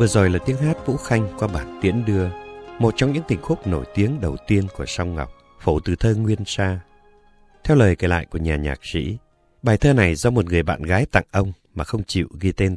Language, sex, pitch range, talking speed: Vietnamese, male, 85-120 Hz, 240 wpm